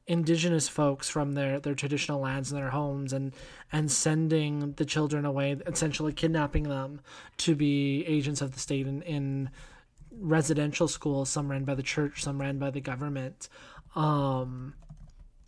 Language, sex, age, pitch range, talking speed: English, male, 20-39, 135-160 Hz, 155 wpm